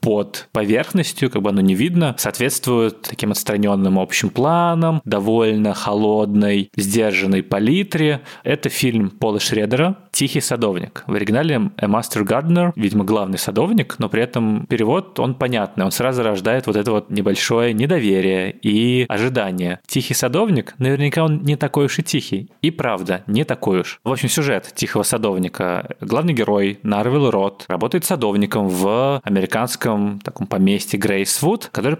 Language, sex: Russian, male